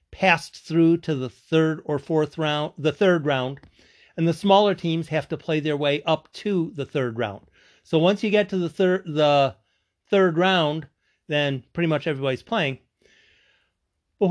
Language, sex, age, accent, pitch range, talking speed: English, male, 40-59, American, 140-205 Hz, 170 wpm